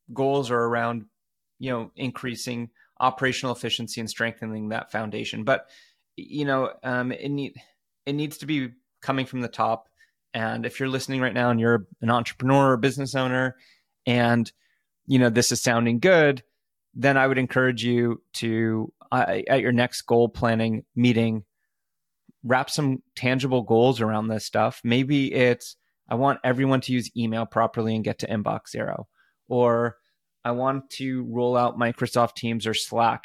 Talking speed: 160 wpm